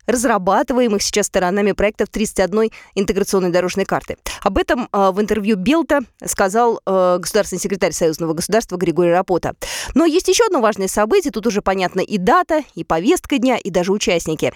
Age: 20-39